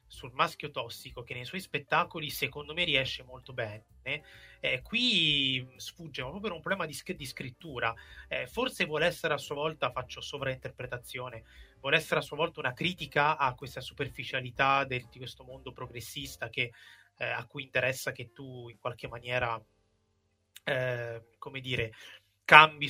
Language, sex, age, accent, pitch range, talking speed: Italian, male, 30-49, native, 120-145 Hz, 150 wpm